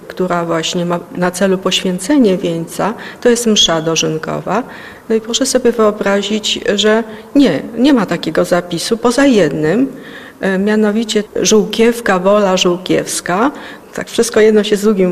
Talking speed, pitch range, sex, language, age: 135 wpm, 180-225 Hz, female, Polish, 40-59